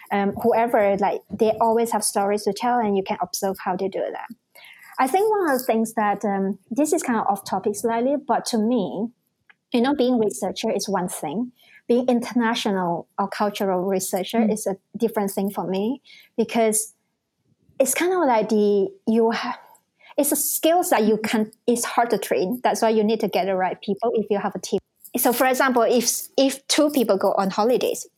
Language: English